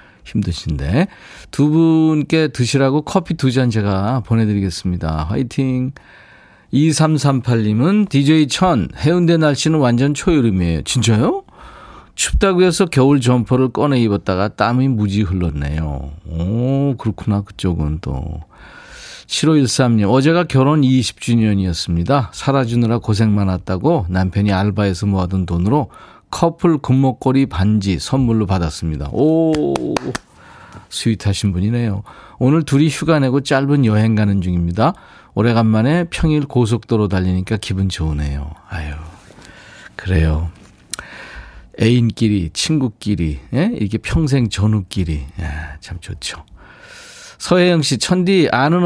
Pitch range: 95-145 Hz